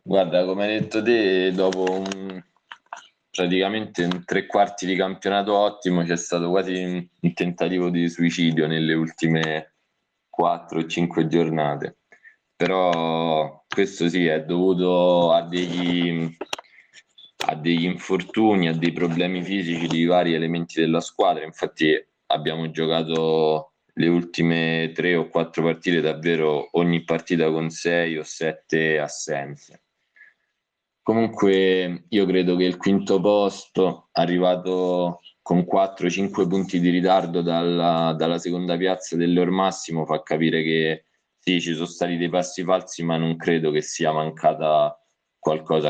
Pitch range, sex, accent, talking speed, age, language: 80-90 Hz, male, native, 130 wpm, 20-39, Italian